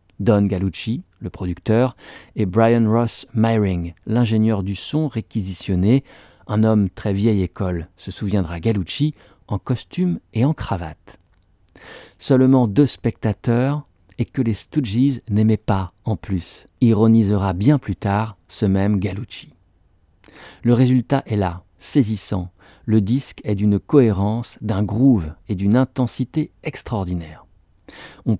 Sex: male